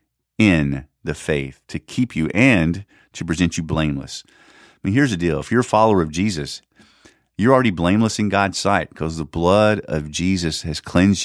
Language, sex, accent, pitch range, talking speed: English, male, American, 80-105 Hz, 185 wpm